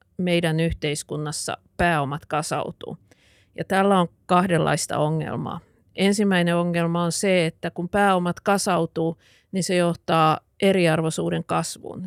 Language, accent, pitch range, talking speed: Finnish, native, 160-185 Hz, 105 wpm